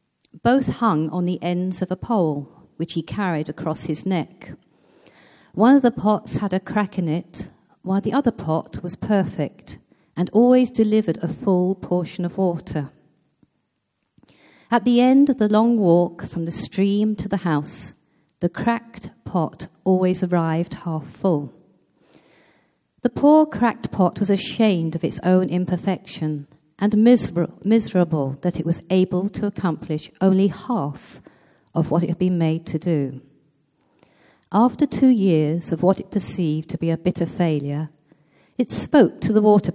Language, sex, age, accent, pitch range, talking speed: English, female, 40-59, British, 160-210 Hz, 155 wpm